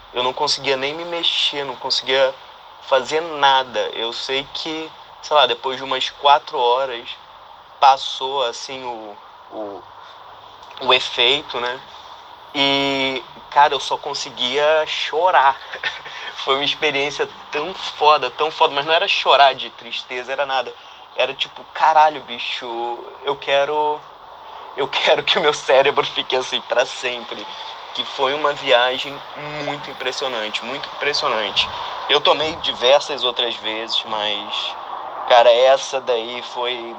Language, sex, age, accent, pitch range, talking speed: Portuguese, male, 20-39, Brazilian, 125-155 Hz, 130 wpm